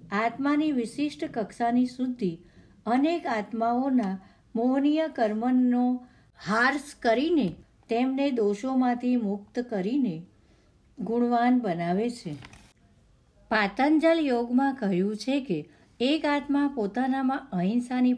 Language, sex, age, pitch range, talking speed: Gujarati, female, 60-79, 200-260 Hz, 85 wpm